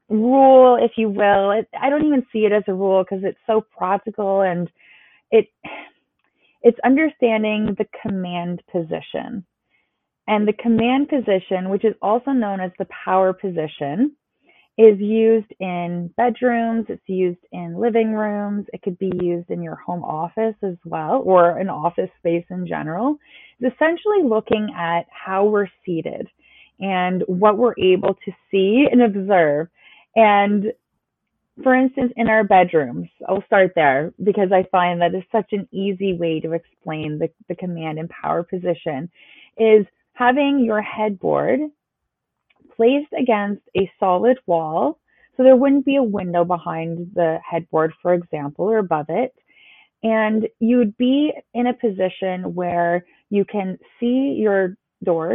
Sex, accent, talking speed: female, American, 150 wpm